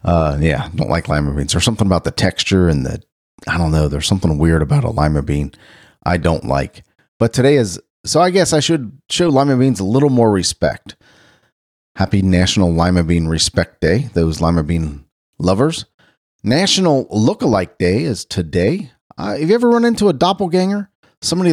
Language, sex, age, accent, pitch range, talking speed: English, male, 40-59, American, 85-125 Hz, 180 wpm